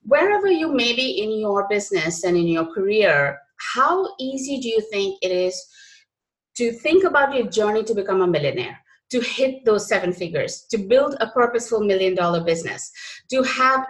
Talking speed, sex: 175 wpm, female